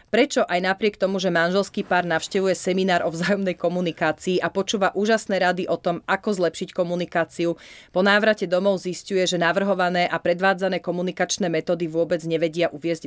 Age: 30-49